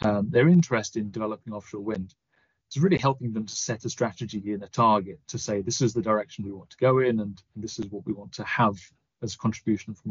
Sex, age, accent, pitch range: male, 30-49, British, 105-125 Hz